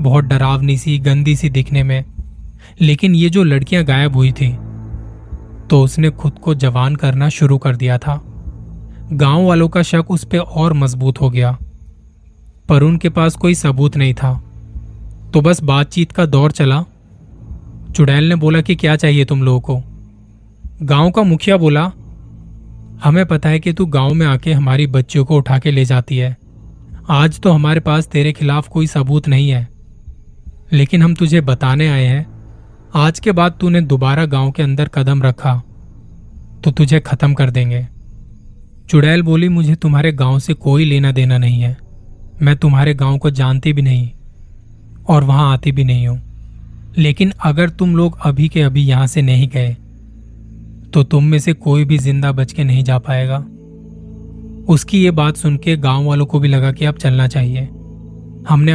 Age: 20-39